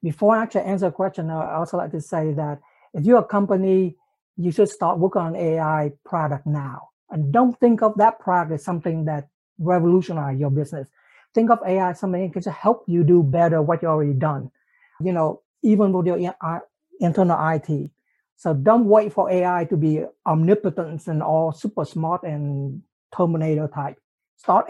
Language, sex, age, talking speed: English, male, 60-79, 180 wpm